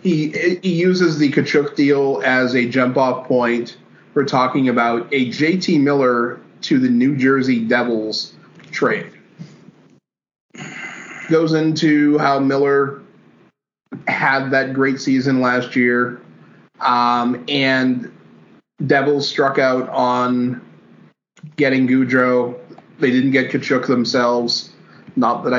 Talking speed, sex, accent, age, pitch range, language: 110 wpm, male, American, 30-49, 120-145 Hz, English